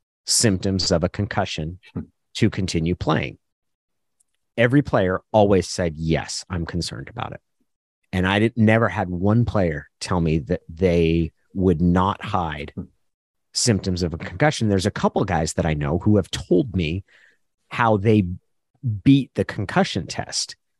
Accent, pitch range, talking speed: American, 95-130 Hz, 145 wpm